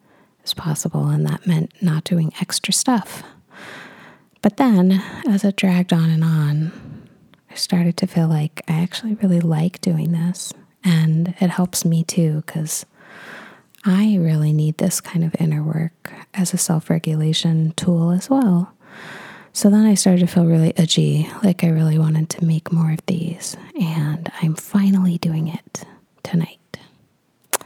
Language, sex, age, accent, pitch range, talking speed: English, female, 30-49, American, 160-190 Hz, 155 wpm